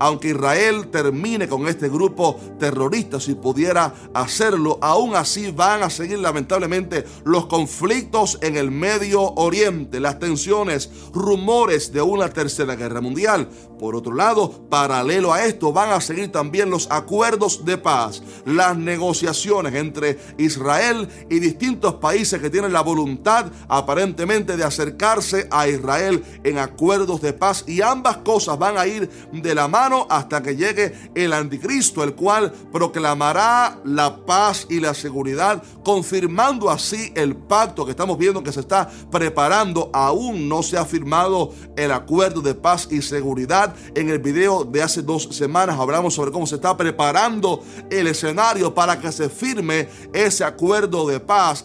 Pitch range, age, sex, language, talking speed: 145-195 Hz, 30-49, male, Spanish, 150 wpm